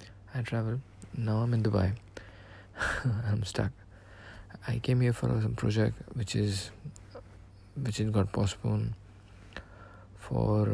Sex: male